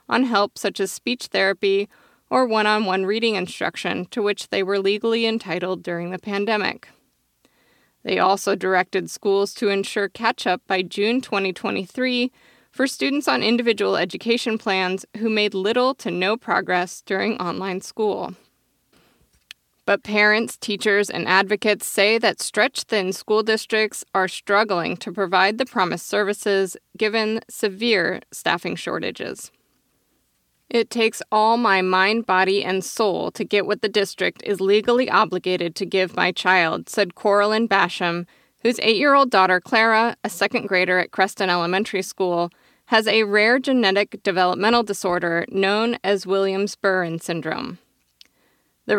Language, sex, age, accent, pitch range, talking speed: English, female, 20-39, American, 190-225 Hz, 140 wpm